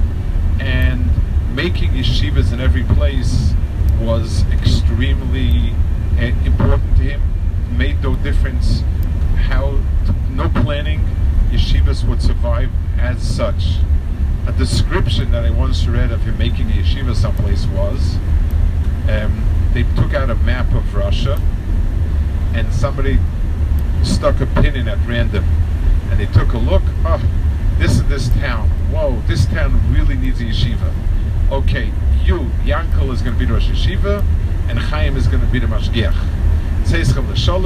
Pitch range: 80-90 Hz